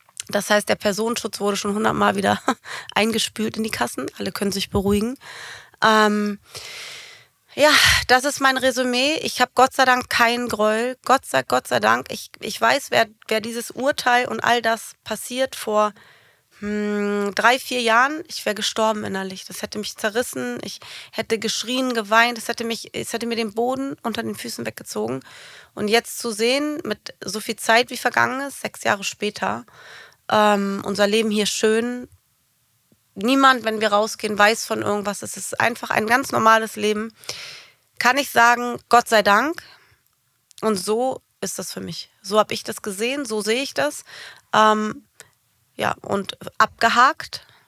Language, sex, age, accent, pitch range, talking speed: German, female, 30-49, German, 205-245 Hz, 160 wpm